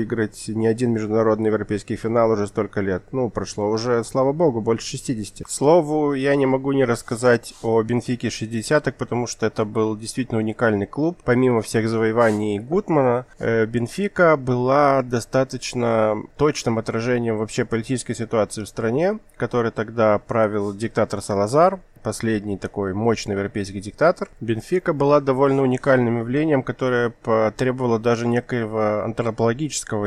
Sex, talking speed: male, 130 wpm